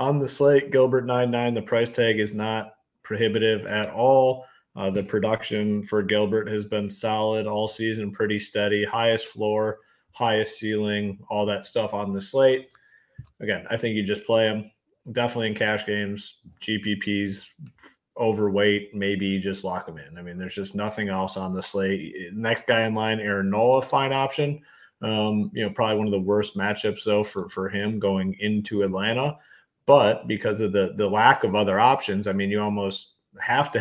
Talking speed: 185 wpm